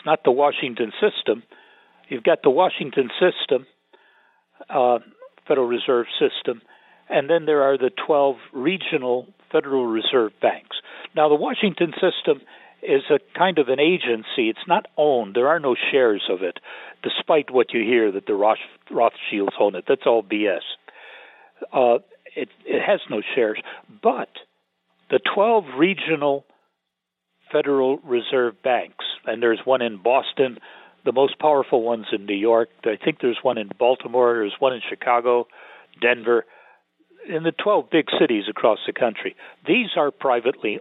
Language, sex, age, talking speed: English, male, 60-79, 150 wpm